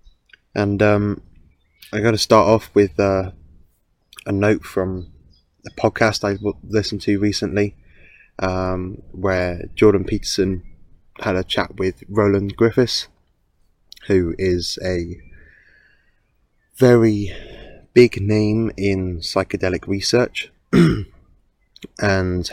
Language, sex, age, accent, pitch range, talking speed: English, male, 20-39, British, 90-105 Hz, 100 wpm